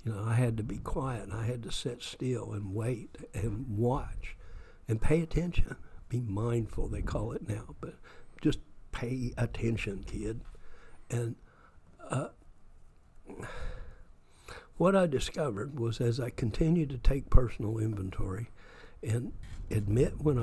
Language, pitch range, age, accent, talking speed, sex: English, 100-130 Hz, 60-79, American, 140 wpm, male